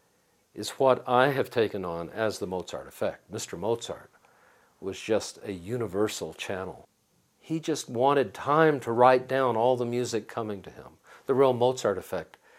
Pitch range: 110-145 Hz